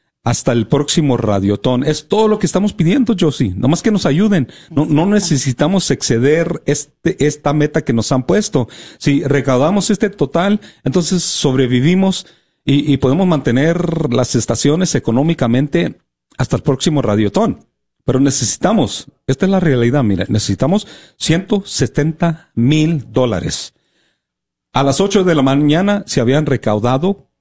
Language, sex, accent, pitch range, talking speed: Spanish, male, Mexican, 120-160 Hz, 140 wpm